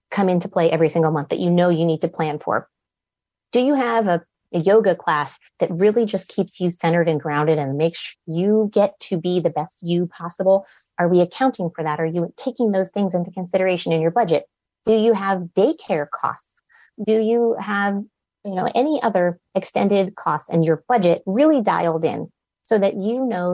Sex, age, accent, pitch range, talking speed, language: female, 30-49, American, 160-200 Hz, 200 wpm, English